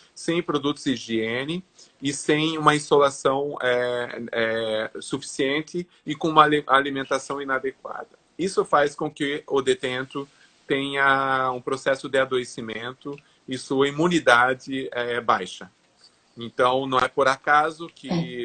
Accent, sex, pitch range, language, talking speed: Brazilian, male, 120-150 Hz, Portuguese, 125 wpm